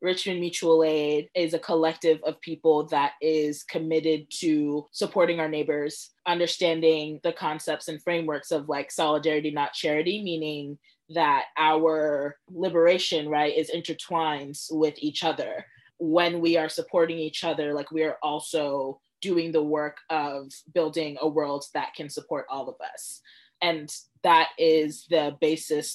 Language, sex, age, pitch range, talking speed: English, female, 20-39, 150-170 Hz, 145 wpm